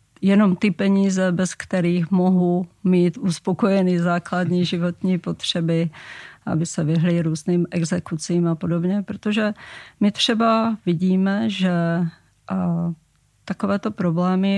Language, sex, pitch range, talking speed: Czech, female, 175-190 Hz, 105 wpm